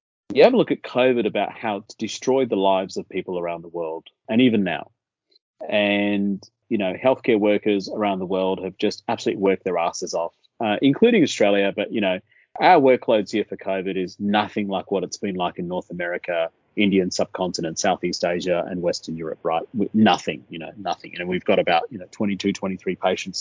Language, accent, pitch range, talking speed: English, Australian, 95-115 Hz, 195 wpm